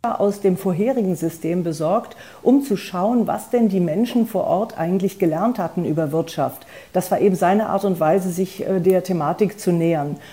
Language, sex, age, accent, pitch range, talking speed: German, female, 40-59, German, 170-200 Hz, 180 wpm